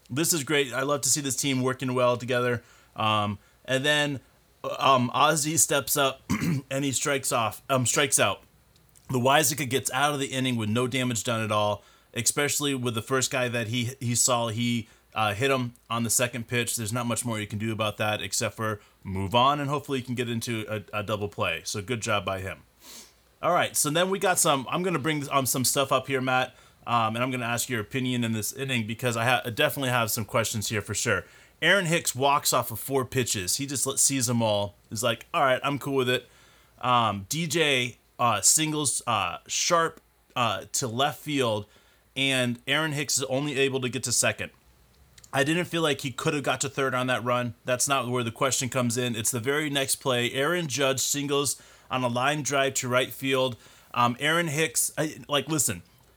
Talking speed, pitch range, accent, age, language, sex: 215 wpm, 115-140 Hz, American, 30-49, English, male